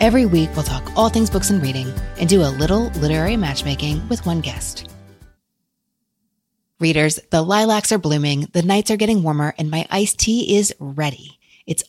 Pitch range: 150-205 Hz